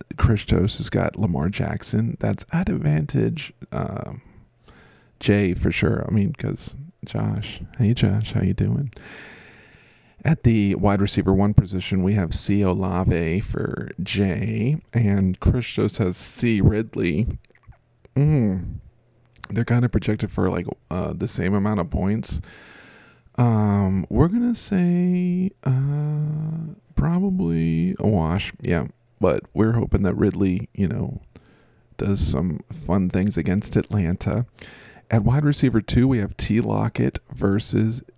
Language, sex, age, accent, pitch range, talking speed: English, male, 40-59, American, 100-125 Hz, 130 wpm